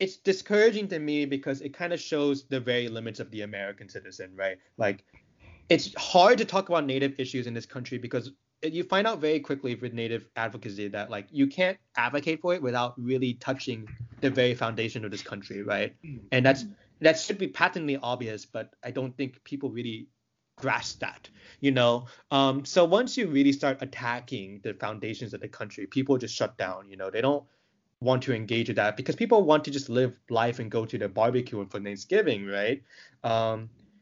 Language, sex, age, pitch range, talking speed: English, male, 20-39, 115-145 Hz, 200 wpm